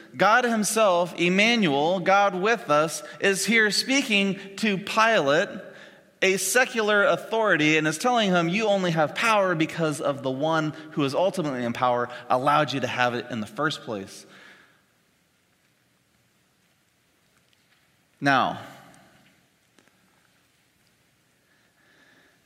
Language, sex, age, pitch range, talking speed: English, male, 30-49, 140-215 Hz, 110 wpm